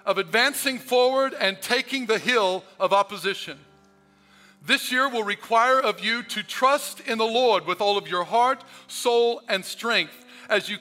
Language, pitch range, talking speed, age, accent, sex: English, 215-265 Hz, 165 wpm, 50-69, American, male